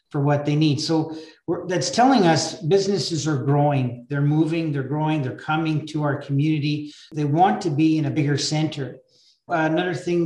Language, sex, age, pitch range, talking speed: English, male, 40-59, 150-175 Hz, 185 wpm